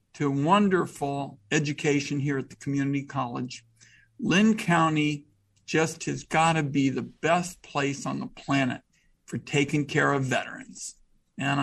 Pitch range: 140-170 Hz